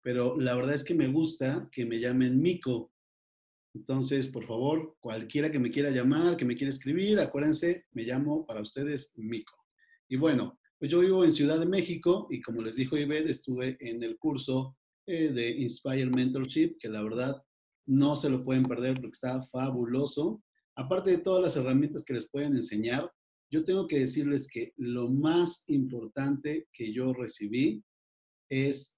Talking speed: 170 wpm